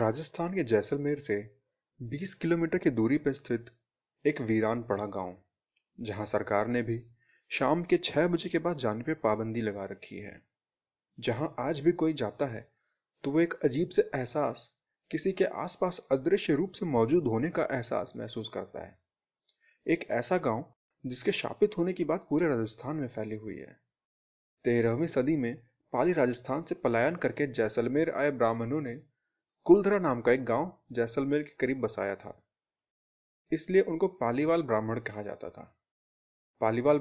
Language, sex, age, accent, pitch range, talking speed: Hindi, male, 30-49, native, 115-160 Hz, 160 wpm